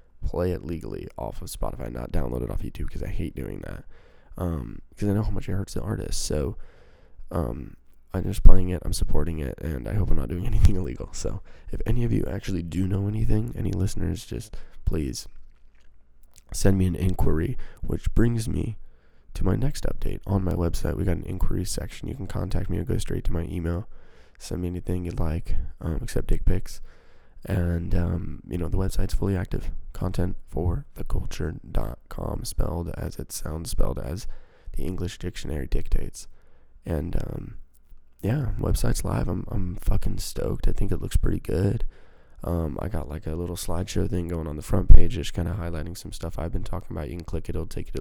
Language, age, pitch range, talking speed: English, 20-39, 80-95 Hz, 200 wpm